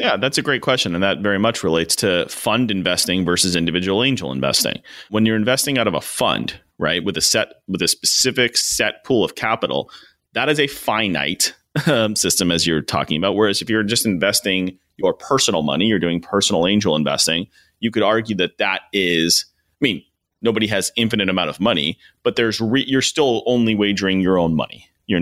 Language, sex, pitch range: English, male, 85-105 Hz